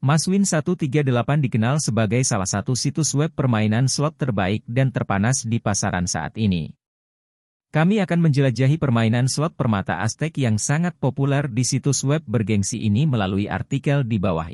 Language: Indonesian